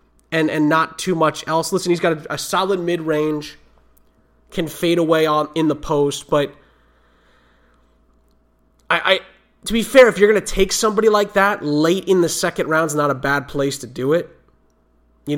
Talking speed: 190 wpm